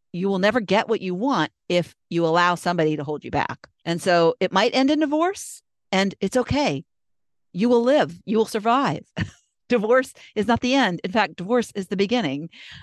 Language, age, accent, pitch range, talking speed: English, 50-69, American, 155-210 Hz, 195 wpm